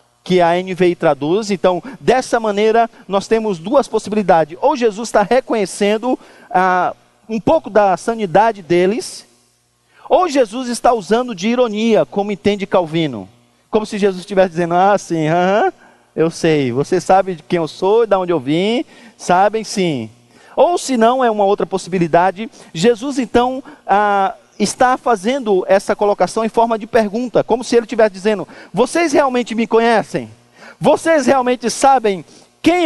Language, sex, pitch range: Portuguese, male, 185-250 Hz